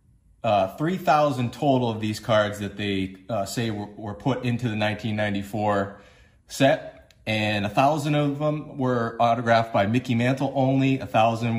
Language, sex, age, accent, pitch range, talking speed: English, male, 30-49, American, 105-140 Hz, 155 wpm